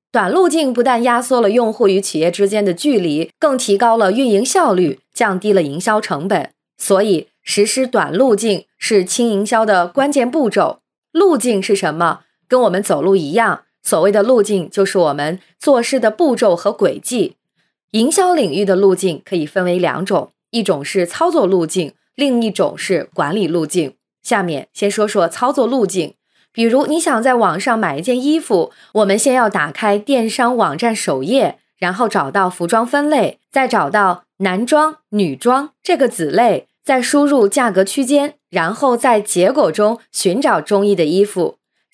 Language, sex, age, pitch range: Chinese, female, 20-39, 190-255 Hz